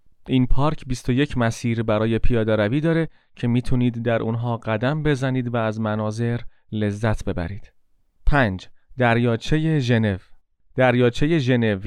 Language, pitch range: Persian, 115-145 Hz